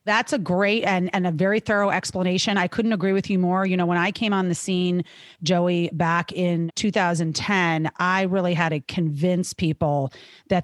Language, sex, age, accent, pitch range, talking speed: English, female, 30-49, American, 175-210 Hz, 190 wpm